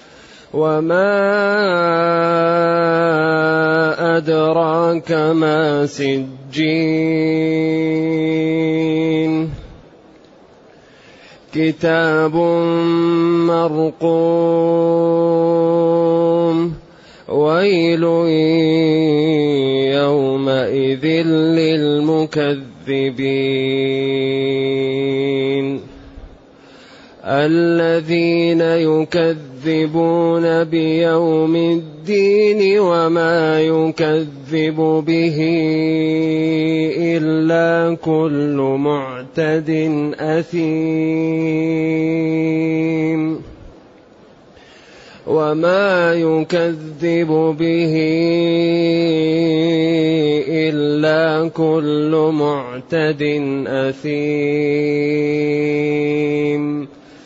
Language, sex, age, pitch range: Arabic, male, 30-49, 150-165 Hz